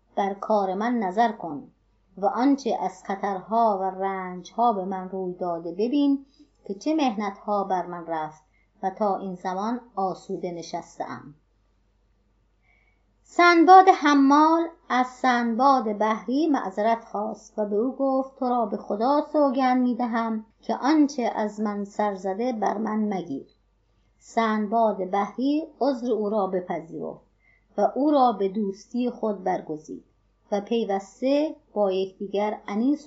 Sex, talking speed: male, 130 wpm